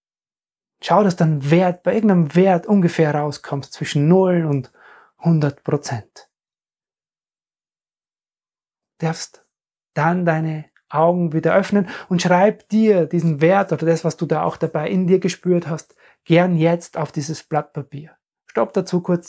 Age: 30-49